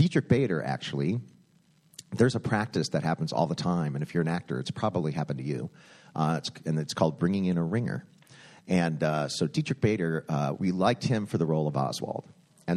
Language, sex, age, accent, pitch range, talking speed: English, male, 40-59, American, 80-115 Hz, 210 wpm